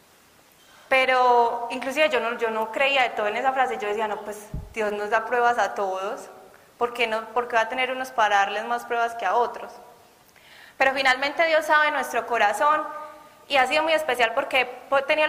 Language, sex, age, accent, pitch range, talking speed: Spanish, female, 20-39, Colombian, 230-275 Hz, 200 wpm